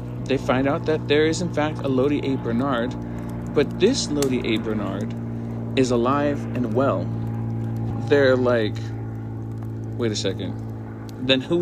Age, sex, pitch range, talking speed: 40-59, male, 115-140 Hz, 145 wpm